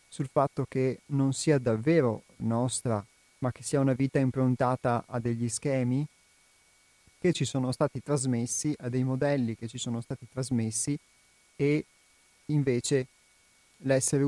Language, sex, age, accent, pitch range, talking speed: Italian, male, 30-49, native, 120-140 Hz, 135 wpm